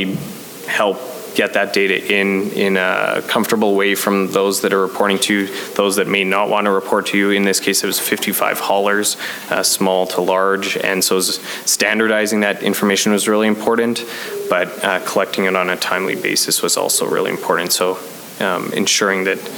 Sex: male